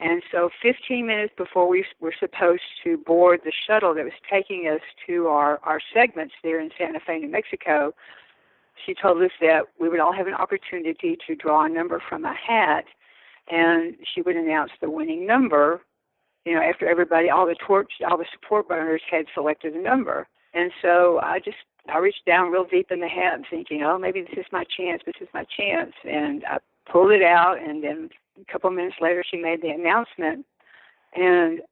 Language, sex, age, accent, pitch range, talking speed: English, female, 60-79, American, 165-190 Hz, 200 wpm